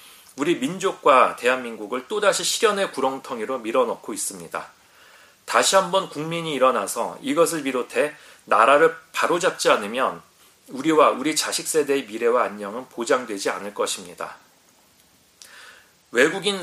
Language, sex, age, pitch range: Korean, male, 40-59, 150-220 Hz